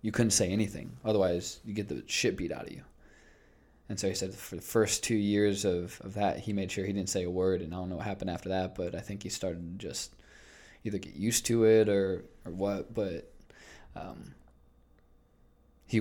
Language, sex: English, male